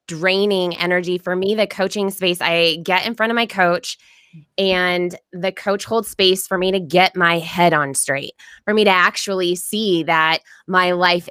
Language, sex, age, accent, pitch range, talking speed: English, female, 20-39, American, 170-200 Hz, 185 wpm